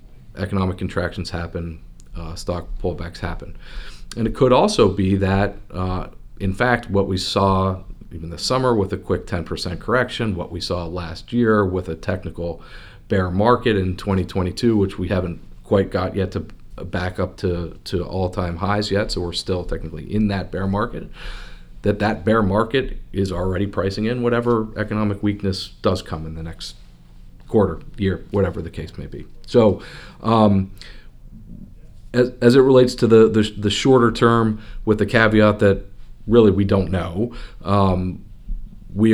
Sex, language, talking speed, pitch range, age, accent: male, English, 165 wpm, 90-105 Hz, 40-59, American